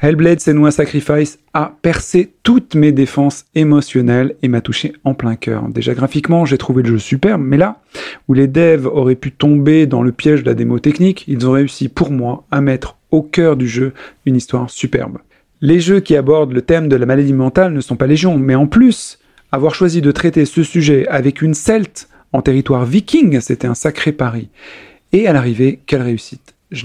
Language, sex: French, male